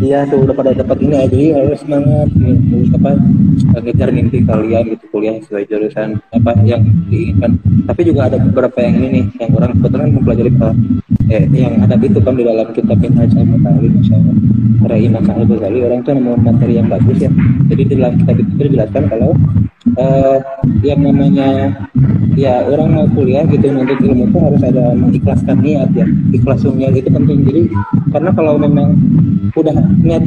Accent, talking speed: native, 170 wpm